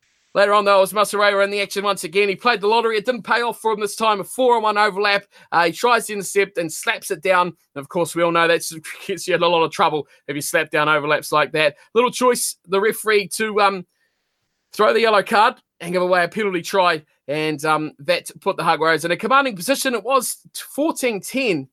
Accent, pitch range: Australian, 170-225 Hz